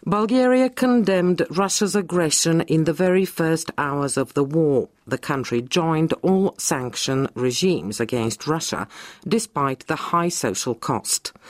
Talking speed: 130 wpm